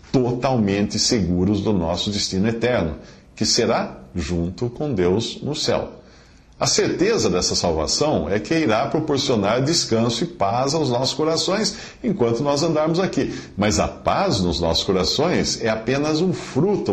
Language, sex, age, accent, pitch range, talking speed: English, male, 50-69, Brazilian, 90-145 Hz, 145 wpm